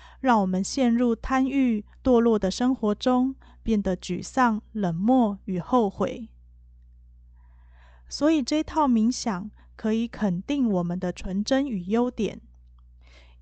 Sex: female